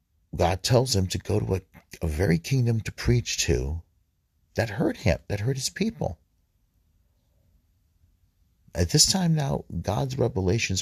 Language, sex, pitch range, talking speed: English, male, 80-100 Hz, 145 wpm